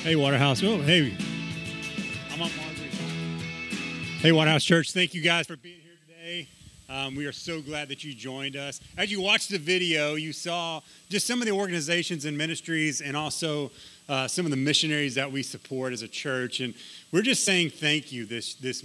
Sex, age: male, 30-49